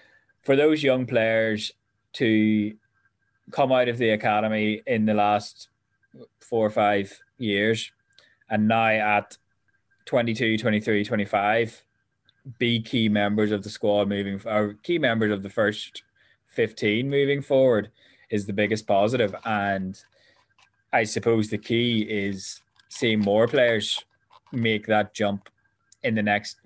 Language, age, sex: English, 20-39, male